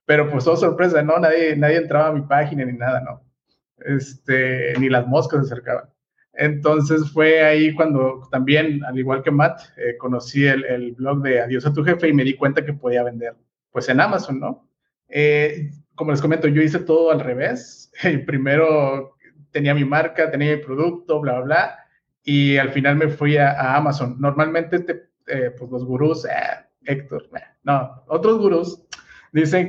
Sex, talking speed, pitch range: male, 185 wpm, 135-160 Hz